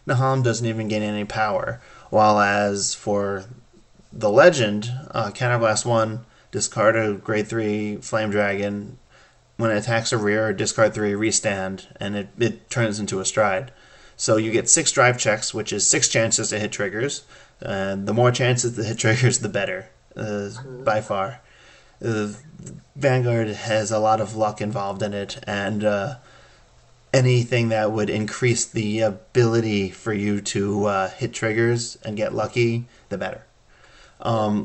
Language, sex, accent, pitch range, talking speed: English, male, American, 105-120 Hz, 155 wpm